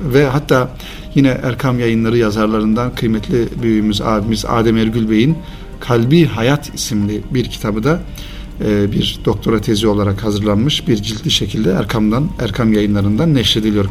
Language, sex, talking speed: Turkish, male, 130 wpm